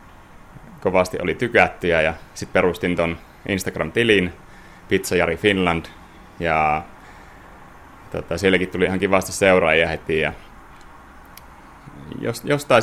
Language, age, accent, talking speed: Finnish, 30-49, native, 95 wpm